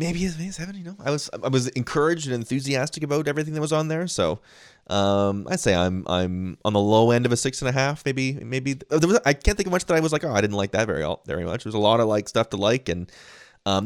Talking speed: 290 wpm